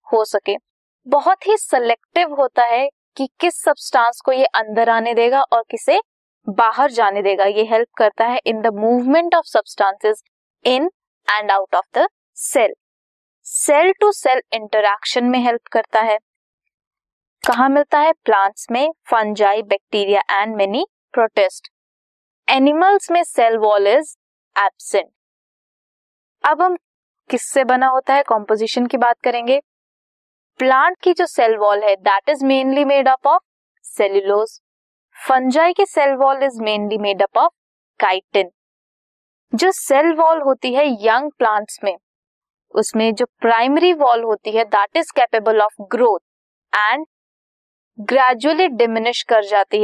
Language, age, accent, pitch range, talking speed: Hindi, 20-39, native, 215-300 Hz, 140 wpm